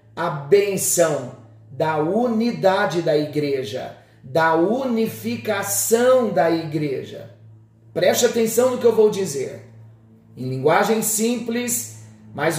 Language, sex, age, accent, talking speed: Portuguese, male, 40-59, Brazilian, 100 wpm